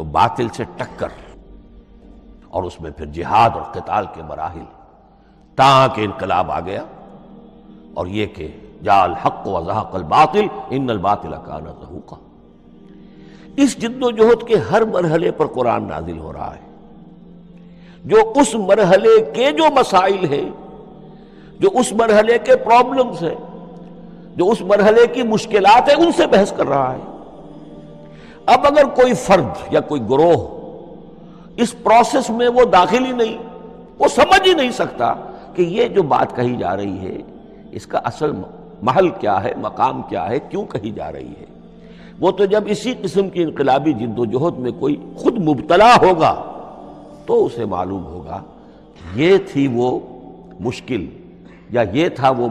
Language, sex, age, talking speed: Urdu, male, 60-79, 150 wpm